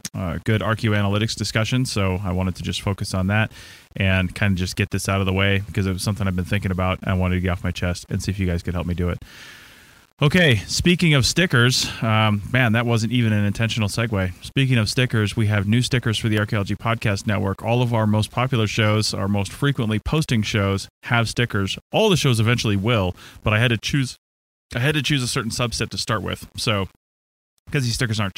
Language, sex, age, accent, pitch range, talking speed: English, male, 30-49, American, 95-120 Hz, 235 wpm